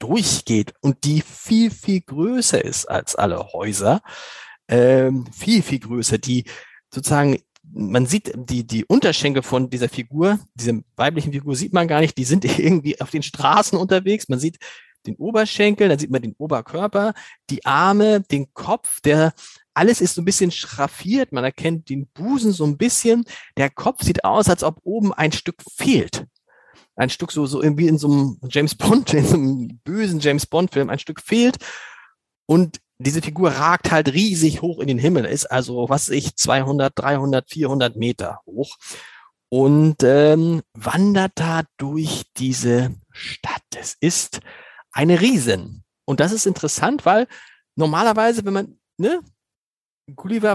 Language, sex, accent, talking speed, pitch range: German, male, German, 160 wpm, 135-190 Hz